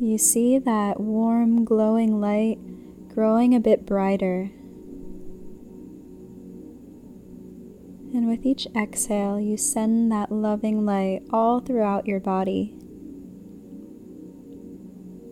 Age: 10-29